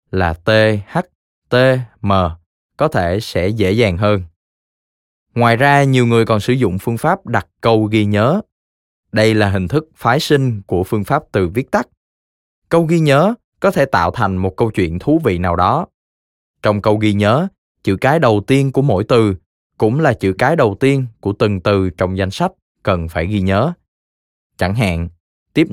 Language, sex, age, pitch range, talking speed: Vietnamese, male, 20-39, 95-130 Hz, 185 wpm